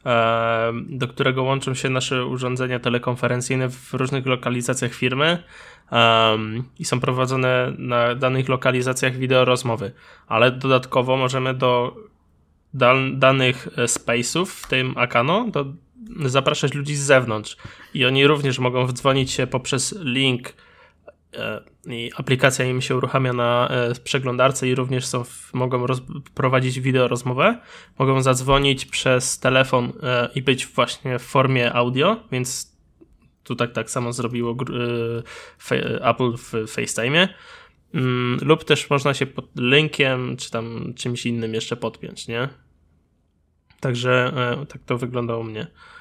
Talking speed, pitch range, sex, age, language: 120 wpm, 120-135 Hz, male, 20-39, Polish